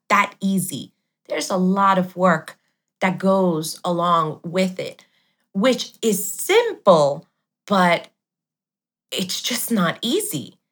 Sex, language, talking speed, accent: female, English, 110 wpm, American